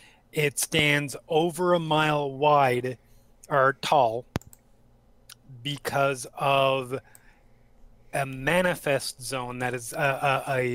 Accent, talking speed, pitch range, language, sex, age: American, 100 wpm, 120-145 Hz, English, male, 30-49